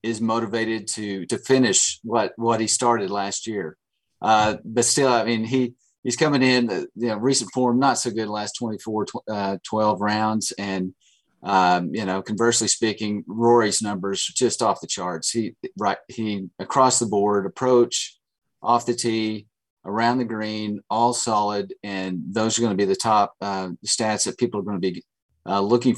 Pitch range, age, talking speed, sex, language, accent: 105-120 Hz, 40-59, 180 wpm, male, English, American